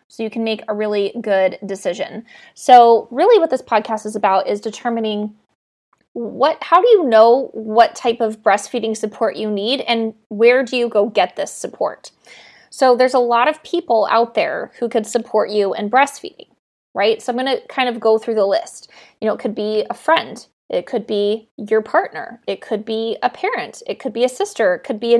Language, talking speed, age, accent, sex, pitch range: English, 205 wpm, 20-39, American, female, 220-265 Hz